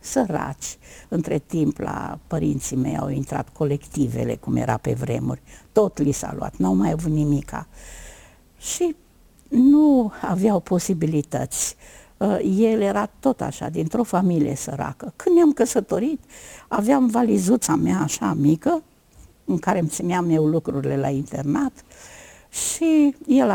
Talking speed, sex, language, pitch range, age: 130 wpm, female, Romanian, 145-235 Hz, 60-79